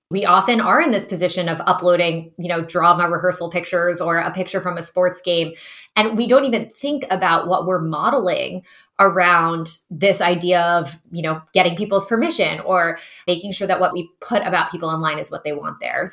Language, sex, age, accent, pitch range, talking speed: English, female, 20-39, American, 170-205 Hz, 195 wpm